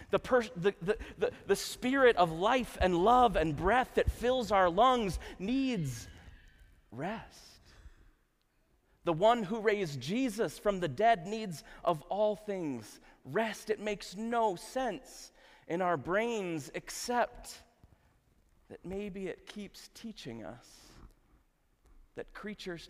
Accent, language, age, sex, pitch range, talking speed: American, English, 40-59, male, 150-220 Hz, 115 wpm